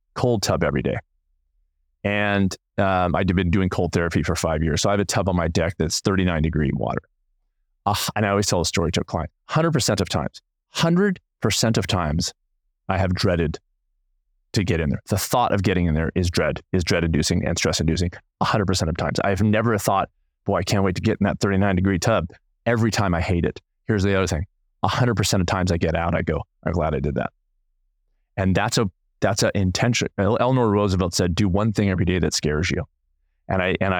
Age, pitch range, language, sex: 30-49, 85-105 Hz, English, male